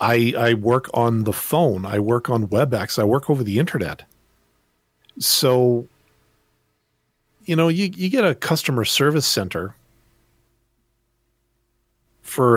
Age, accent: 40-59, American